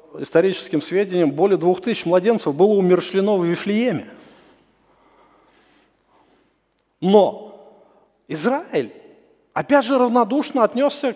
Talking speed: 85 wpm